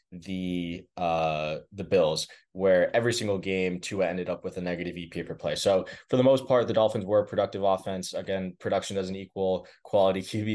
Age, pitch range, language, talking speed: 20-39, 95-110 Hz, English, 195 wpm